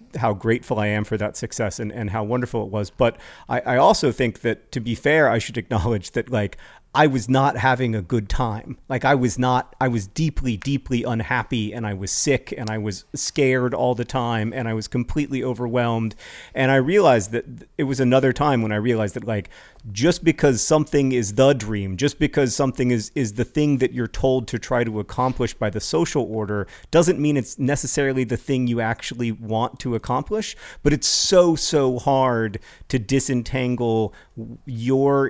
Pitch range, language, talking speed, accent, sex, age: 110-135 Hz, English, 195 wpm, American, male, 40-59